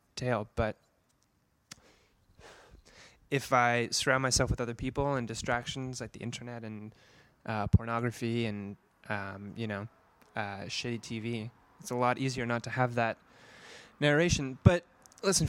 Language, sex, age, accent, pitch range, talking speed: English, male, 20-39, American, 120-140 Hz, 130 wpm